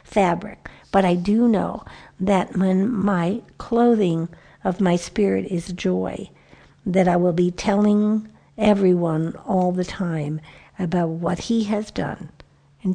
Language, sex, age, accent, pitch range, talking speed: English, female, 60-79, American, 175-210 Hz, 135 wpm